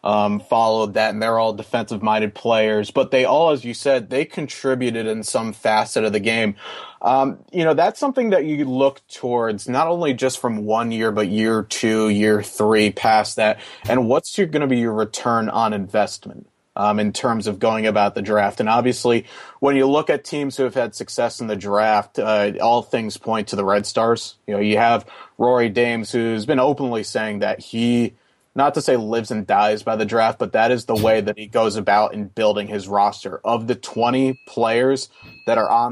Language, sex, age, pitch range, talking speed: English, male, 30-49, 105-130 Hz, 210 wpm